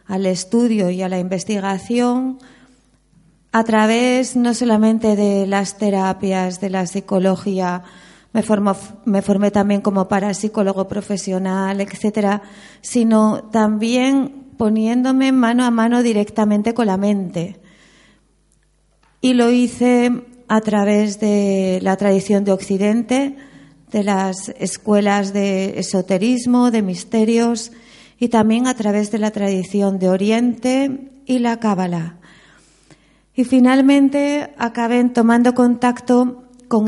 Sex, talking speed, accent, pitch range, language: female, 110 wpm, Spanish, 200-245 Hz, Spanish